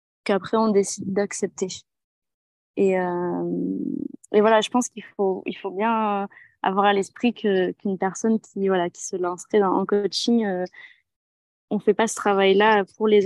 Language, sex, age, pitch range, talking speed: French, female, 20-39, 185-215 Hz, 170 wpm